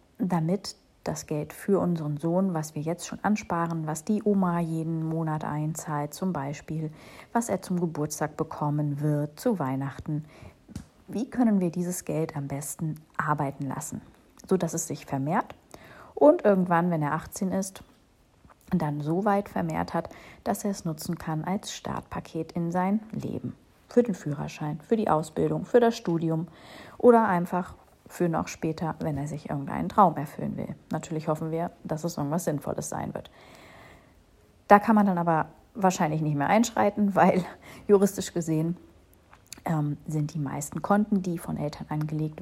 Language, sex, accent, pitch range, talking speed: German, female, German, 150-195 Hz, 160 wpm